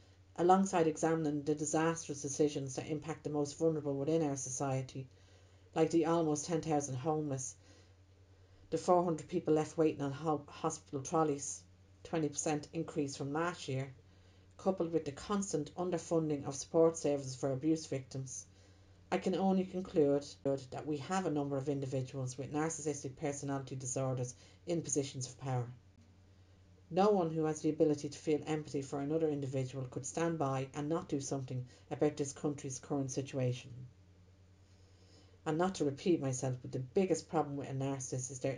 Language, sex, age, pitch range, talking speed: English, female, 50-69, 130-155 Hz, 155 wpm